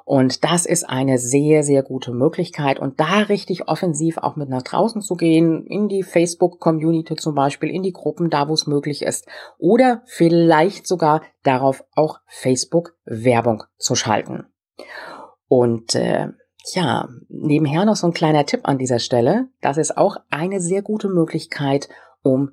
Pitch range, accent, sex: 130-190 Hz, German, female